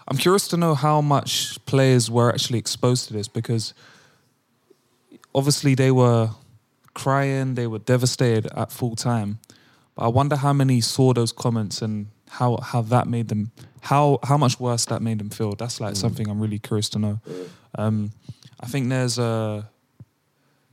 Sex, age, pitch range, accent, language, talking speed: male, 20-39, 115-135 Hz, British, English, 165 wpm